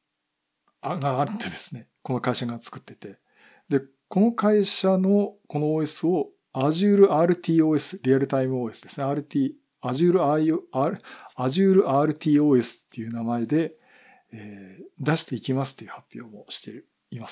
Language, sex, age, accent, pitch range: Japanese, male, 50-69, native, 125-180 Hz